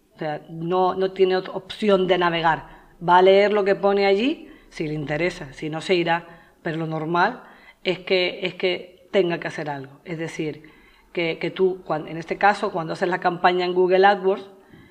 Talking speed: 190 wpm